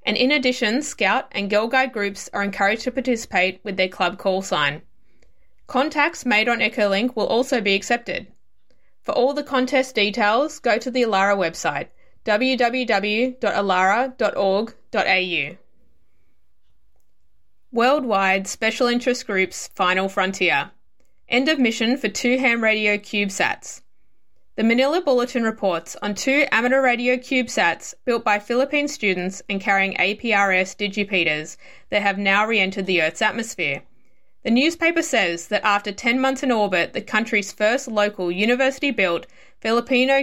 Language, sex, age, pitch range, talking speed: English, female, 20-39, 195-250 Hz, 135 wpm